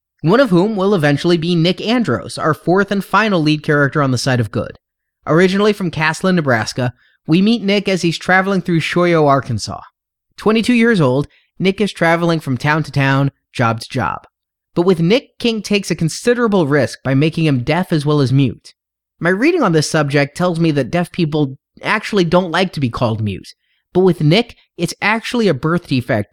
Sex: male